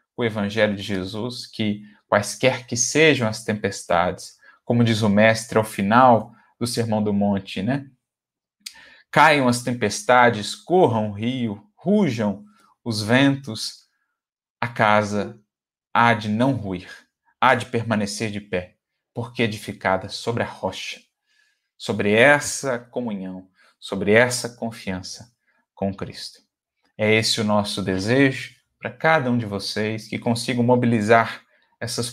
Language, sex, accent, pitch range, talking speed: Portuguese, male, Brazilian, 105-125 Hz, 125 wpm